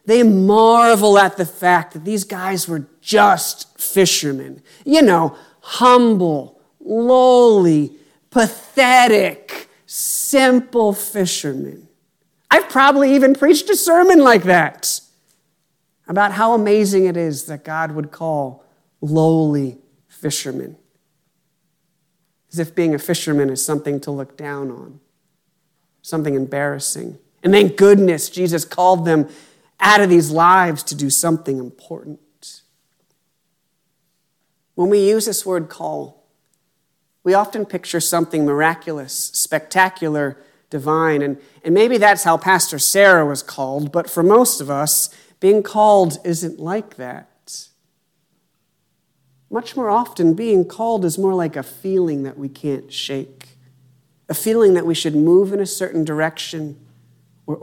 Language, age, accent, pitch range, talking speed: English, 50-69, American, 150-200 Hz, 125 wpm